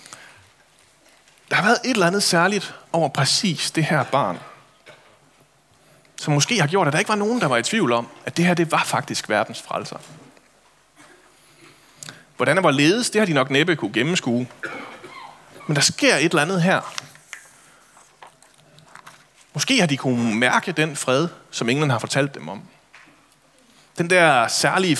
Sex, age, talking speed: male, 30-49, 160 wpm